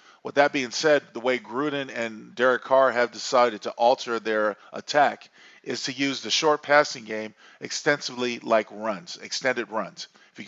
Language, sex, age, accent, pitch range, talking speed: English, male, 40-59, American, 110-135 Hz, 170 wpm